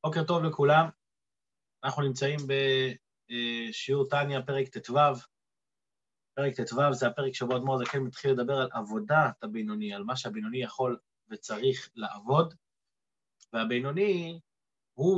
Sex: male